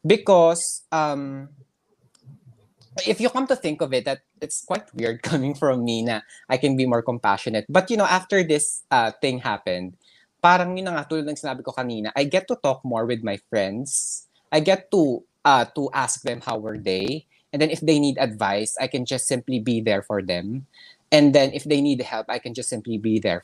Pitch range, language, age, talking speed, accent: 115-155 Hz, Filipino, 20-39, 205 wpm, native